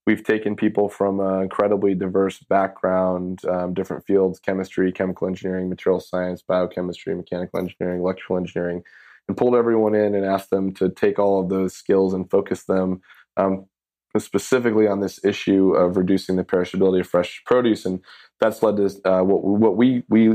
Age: 20-39